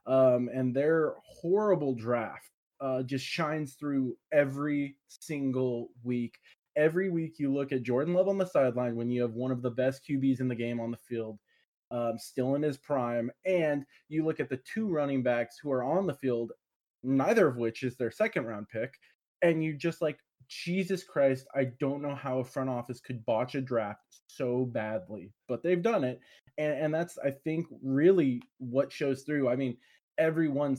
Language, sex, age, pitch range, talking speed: English, male, 20-39, 120-150 Hz, 190 wpm